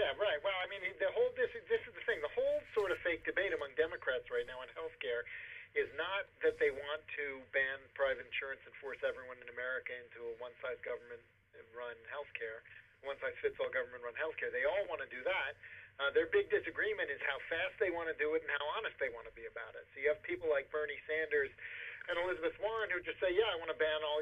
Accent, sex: American, male